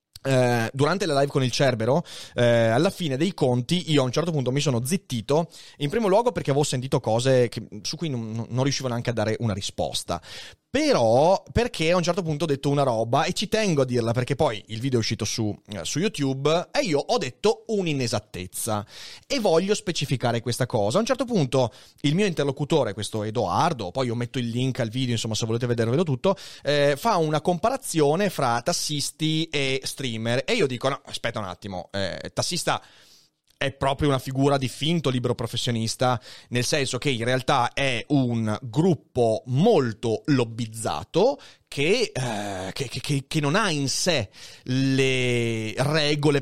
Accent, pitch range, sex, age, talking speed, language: native, 120-155 Hz, male, 30-49, 175 wpm, Italian